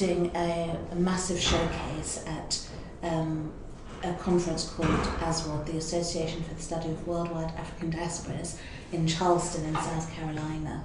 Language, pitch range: English, 165-185 Hz